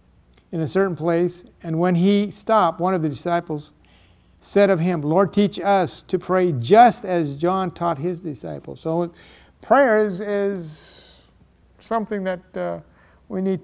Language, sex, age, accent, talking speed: English, male, 60-79, American, 150 wpm